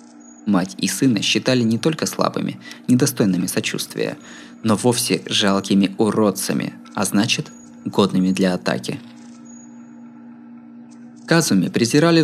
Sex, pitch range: male, 95-155 Hz